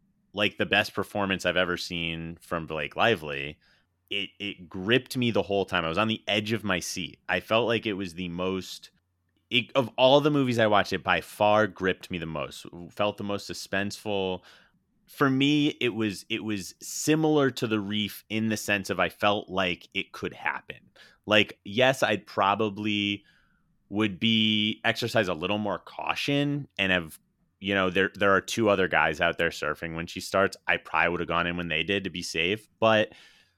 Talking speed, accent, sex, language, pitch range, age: 195 wpm, American, male, English, 85-110 Hz, 30-49